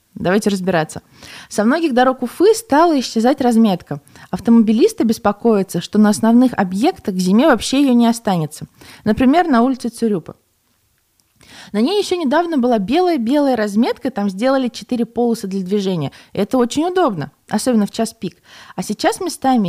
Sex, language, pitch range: female, Russian, 195-250 Hz